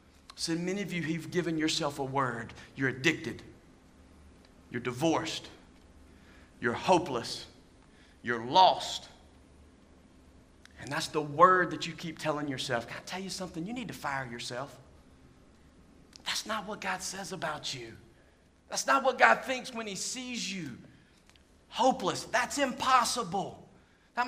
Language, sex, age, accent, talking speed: English, male, 40-59, American, 140 wpm